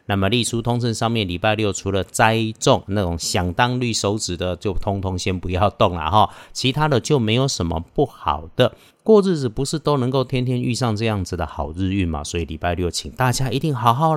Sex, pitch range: male, 90-130 Hz